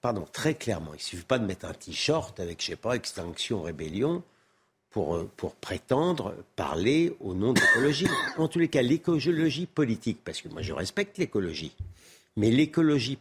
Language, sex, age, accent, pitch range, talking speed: French, male, 60-79, French, 100-155 Hz, 180 wpm